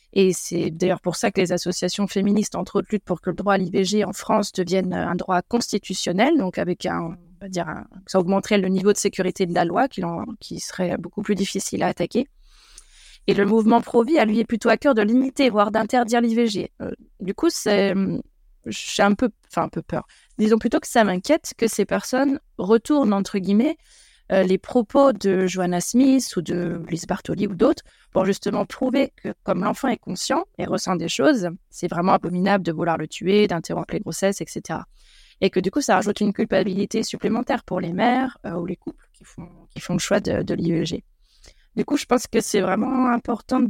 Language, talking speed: French, 210 wpm